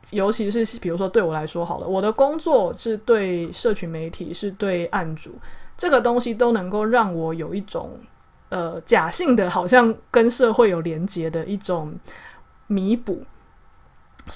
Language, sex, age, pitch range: Chinese, female, 20-39, 170-225 Hz